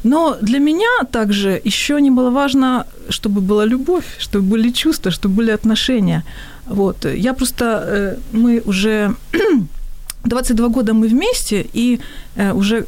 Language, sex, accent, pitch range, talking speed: Ukrainian, female, native, 195-240 Hz, 130 wpm